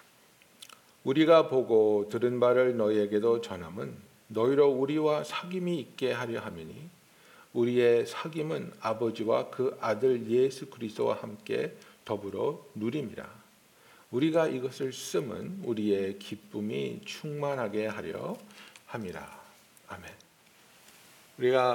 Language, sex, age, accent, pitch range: Korean, male, 50-69, native, 105-145 Hz